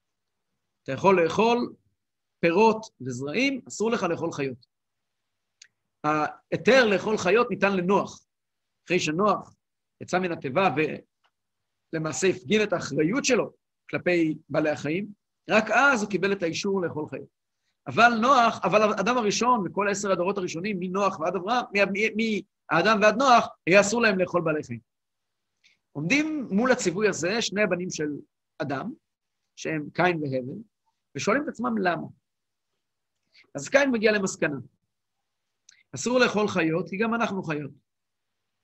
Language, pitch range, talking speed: Hebrew, 150-215 Hz, 130 wpm